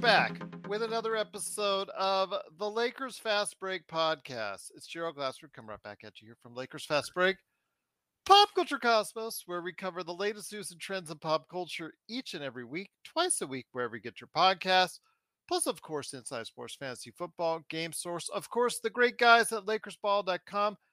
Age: 40-59